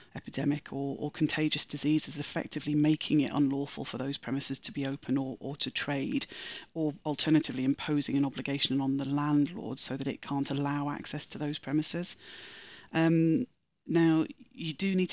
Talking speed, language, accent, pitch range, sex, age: 165 wpm, English, British, 140-160 Hz, female, 30-49